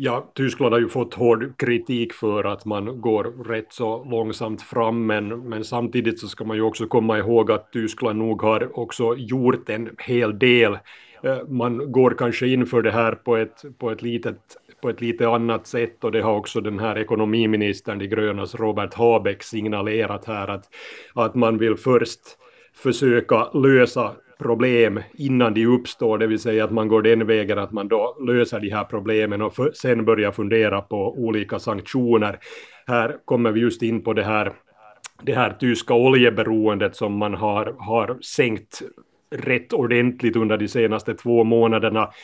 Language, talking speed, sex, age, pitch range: Swedish, 165 wpm, male, 30-49, 105-120 Hz